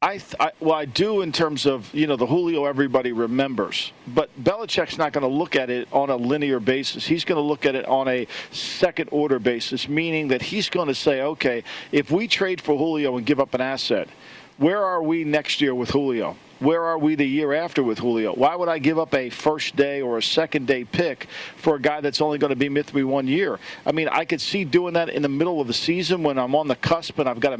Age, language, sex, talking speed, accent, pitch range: 50-69, English, male, 245 wpm, American, 135-160 Hz